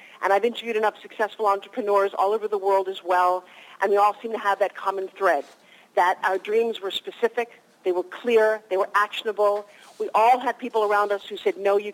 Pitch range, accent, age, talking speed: 195-240 Hz, American, 40-59, 210 wpm